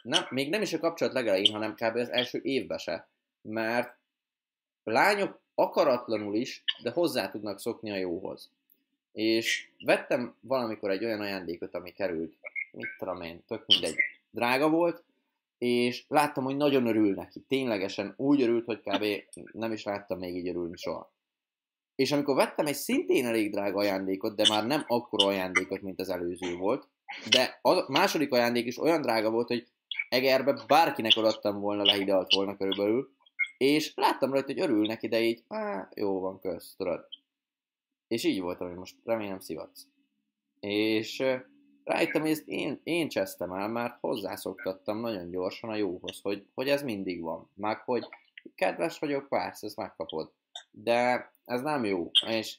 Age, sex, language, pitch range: 20-39, male, Hungarian, 100-135 Hz